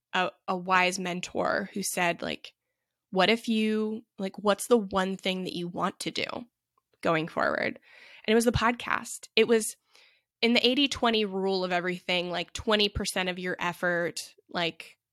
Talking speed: 165 wpm